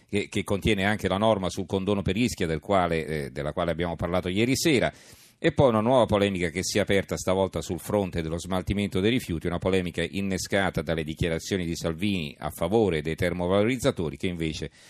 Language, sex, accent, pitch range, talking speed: Italian, male, native, 90-110 Hz, 195 wpm